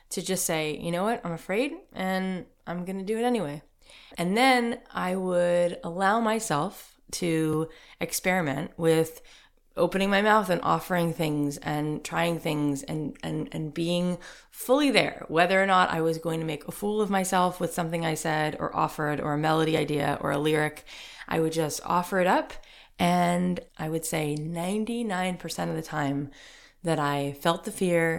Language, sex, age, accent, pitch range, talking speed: English, female, 20-39, American, 155-185 Hz, 175 wpm